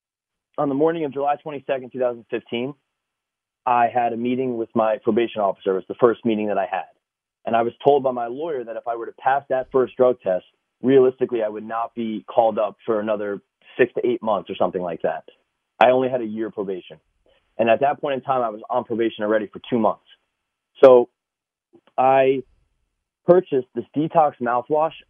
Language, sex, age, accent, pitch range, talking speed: English, male, 30-49, American, 110-130 Hz, 200 wpm